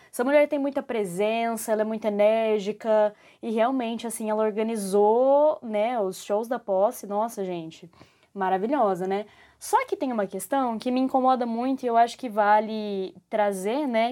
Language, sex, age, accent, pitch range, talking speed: Portuguese, female, 10-29, Brazilian, 195-250 Hz, 165 wpm